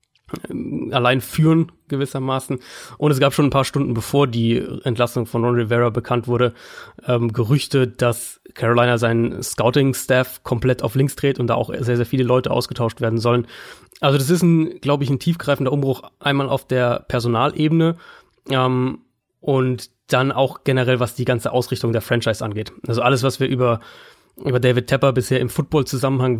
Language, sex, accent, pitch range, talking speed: German, male, German, 125-140 Hz, 170 wpm